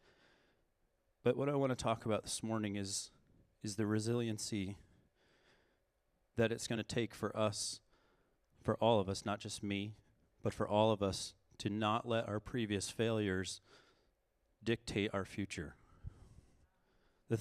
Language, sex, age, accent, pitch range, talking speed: English, male, 30-49, American, 105-120 Hz, 145 wpm